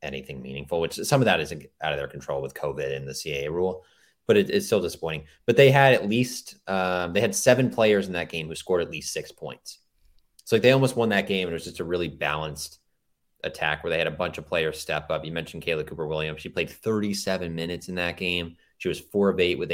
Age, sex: 20-39, male